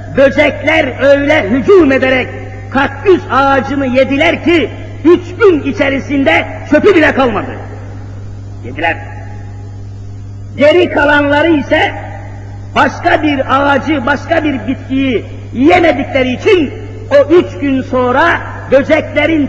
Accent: native